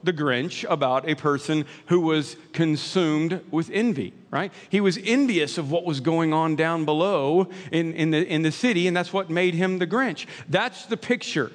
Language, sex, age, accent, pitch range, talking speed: English, male, 50-69, American, 165-200 Hz, 190 wpm